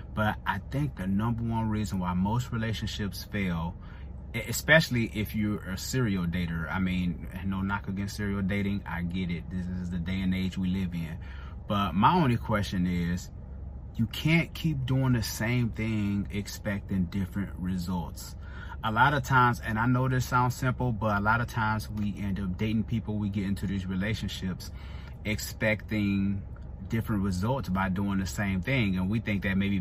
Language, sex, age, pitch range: English, male, 30-49, 95-120 Hz